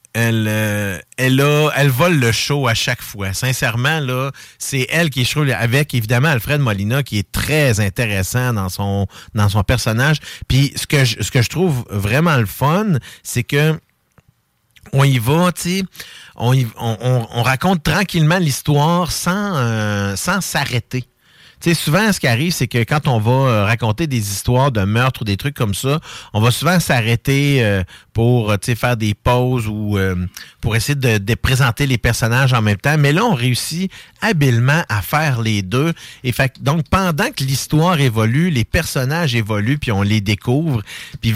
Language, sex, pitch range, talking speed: French, male, 110-145 Hz, 185 wpm